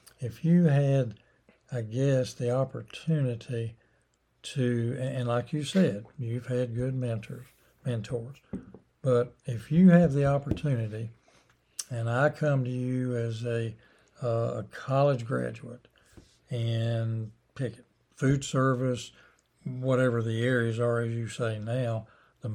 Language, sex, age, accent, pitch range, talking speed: English, male, 60-79, American, 115-140 Hz, 120 wpm